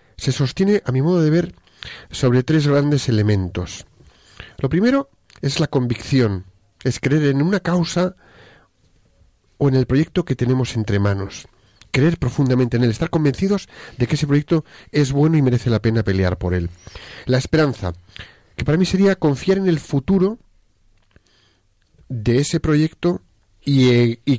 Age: 40-59